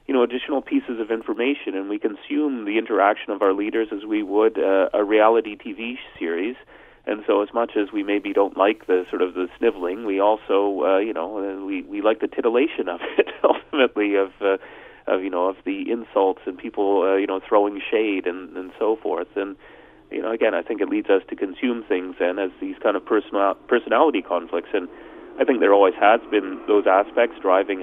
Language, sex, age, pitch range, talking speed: English, male, 30-49, 95-120 Hz, 210 wpm